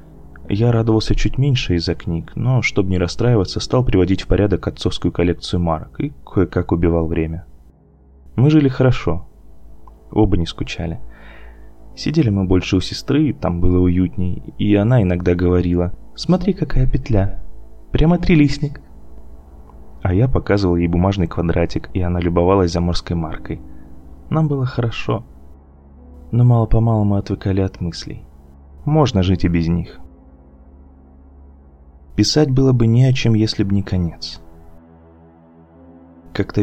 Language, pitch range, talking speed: Russian, 80-110 Hz, 135 wpm